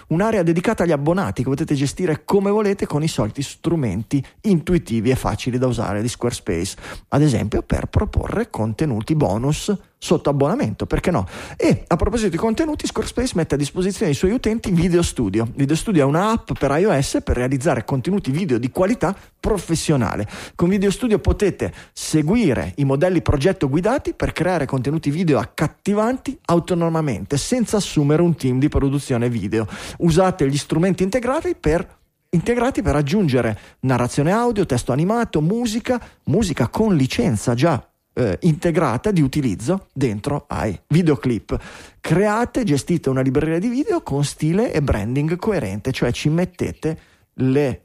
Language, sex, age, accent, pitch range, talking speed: Italian, male, 30-49, native, 125-185 Hz, 150 wpm